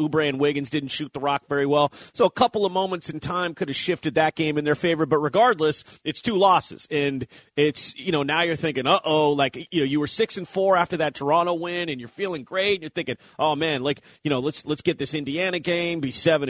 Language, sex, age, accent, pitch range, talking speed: English, male, 30-49, American, 150-190 Hz, 255 wpm